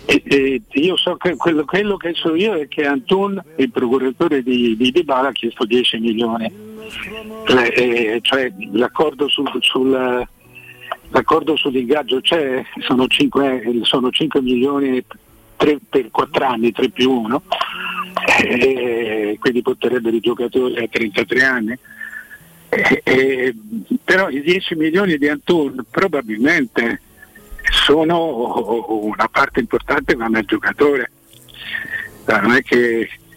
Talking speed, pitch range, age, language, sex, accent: 120 wpm, 120-145 Hz, 60-79, Italian, male, native